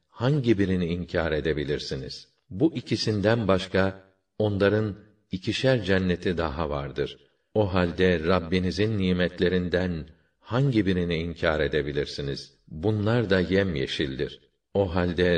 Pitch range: 85-100 Hz